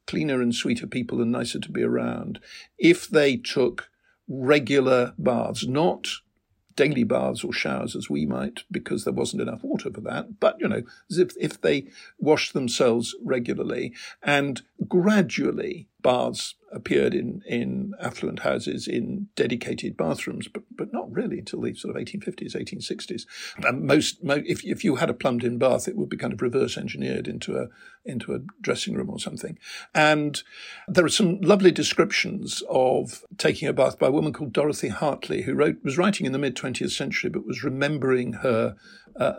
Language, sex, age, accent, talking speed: English, male, 60-79, British, 175 wpm